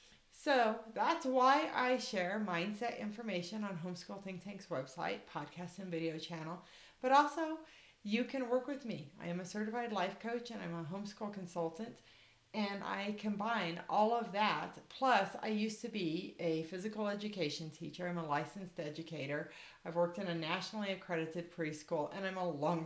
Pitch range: 165-215 Hz